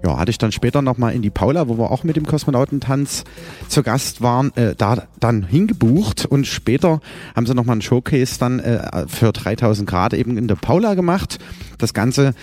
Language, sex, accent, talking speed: German, male, German, 200 wpm